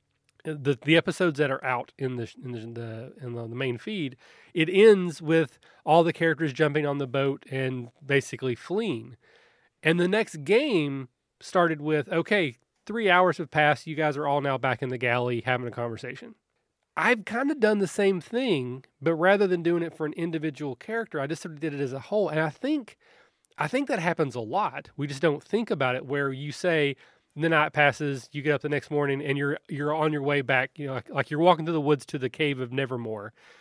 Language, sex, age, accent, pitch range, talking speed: English, male, 30-49, American, 135-175 Hz, 220 wpm